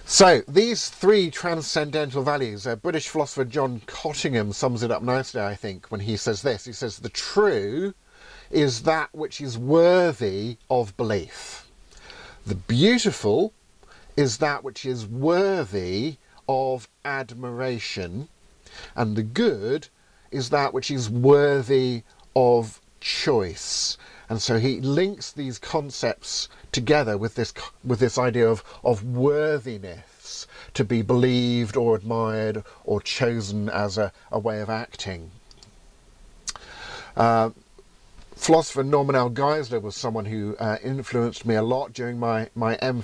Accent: British